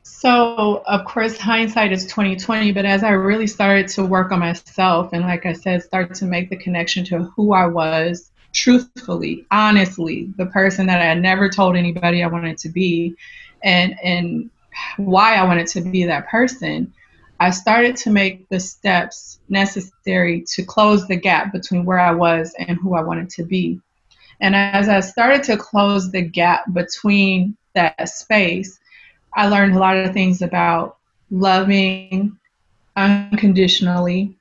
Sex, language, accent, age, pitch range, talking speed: female, English, American, 20-39, 180-205 Hz, 160 wpm